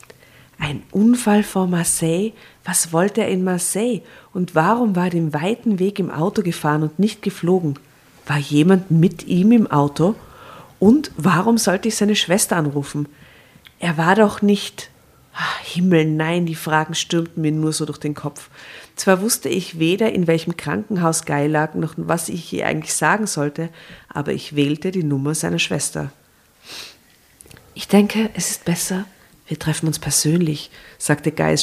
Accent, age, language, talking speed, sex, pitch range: German, 50-69, German, 160 wpm, female, 150-185 Hz